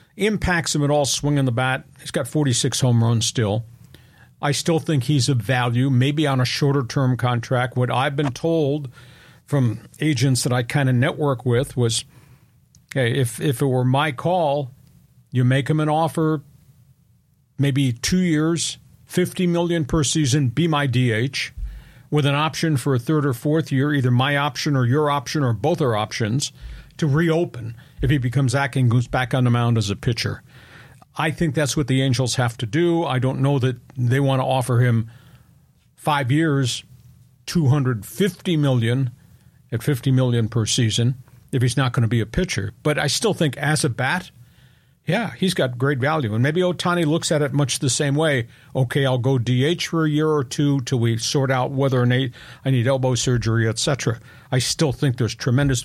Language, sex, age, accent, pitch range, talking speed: English, male, 50-69, American, 125-150 Hz, 190 wpm